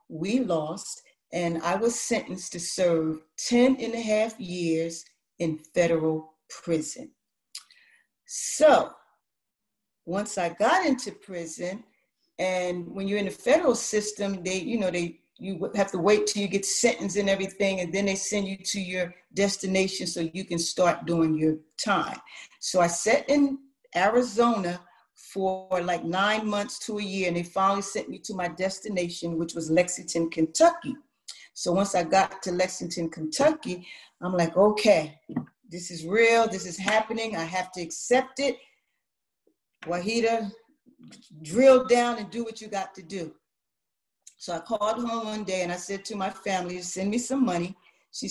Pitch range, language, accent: 175-225 Hz, English, American